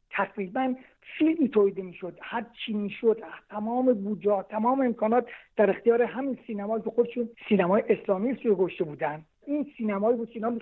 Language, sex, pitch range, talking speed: Persian, male, 200-260 Hz, 155 wpm